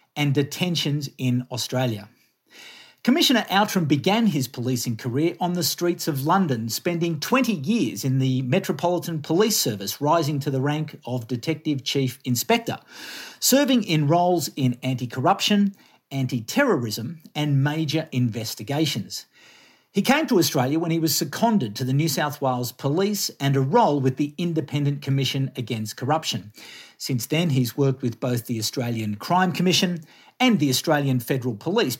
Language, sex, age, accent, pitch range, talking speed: English, male, 50-69, Australian, 130-185 Hz, 145 wpm